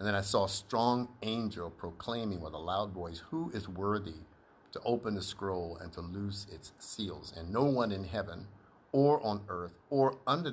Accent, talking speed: American, 195 wpm